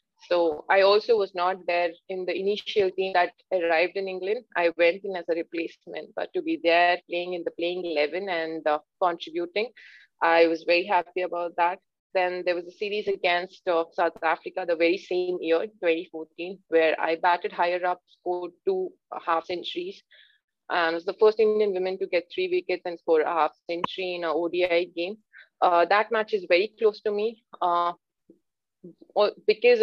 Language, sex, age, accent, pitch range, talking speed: English, female, 30-49, Indian, 175-215 Hz, 180 wpm